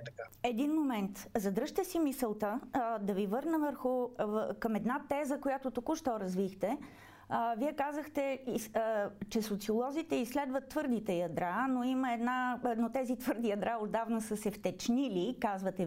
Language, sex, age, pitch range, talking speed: Bulgarian, female, 30-49, 205-260 Hz, 130 wpm